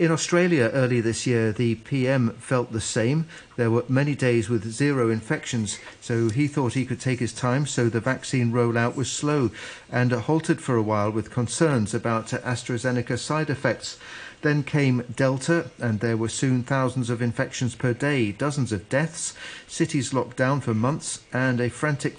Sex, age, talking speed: male, 40-59, 175 wpm